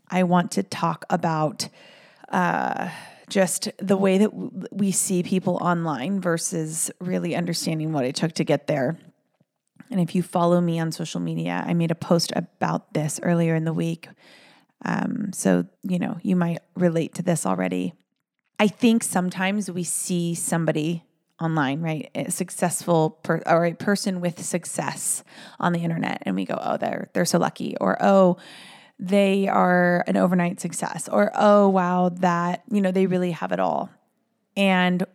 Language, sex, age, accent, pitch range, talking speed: English, female, 30-49, American, 165-195 Hz, 165 wpm